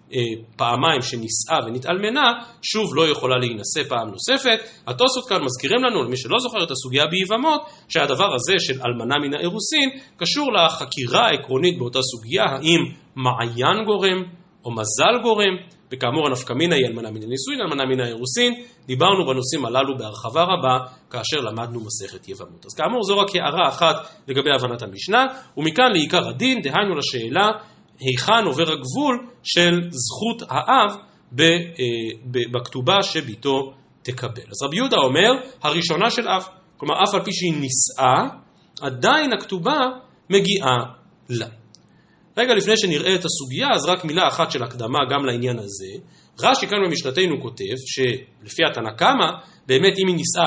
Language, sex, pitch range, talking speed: Hebrew, male, 125-195 Hz, 145 wpm